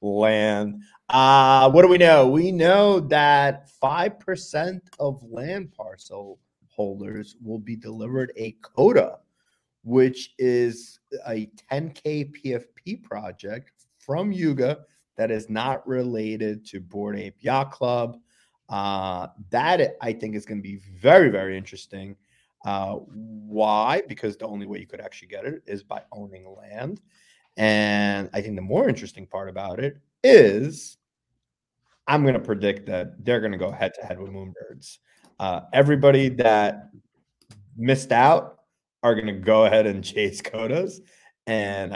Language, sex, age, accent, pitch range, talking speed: English, male, 30-49, American, 105-135 Hz, 145 wpm